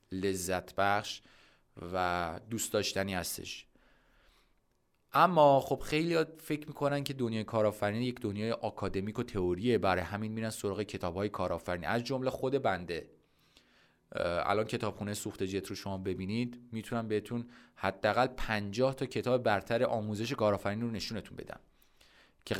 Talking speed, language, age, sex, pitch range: 130 wpm, Persian, 30-49, male, 100-130 Hz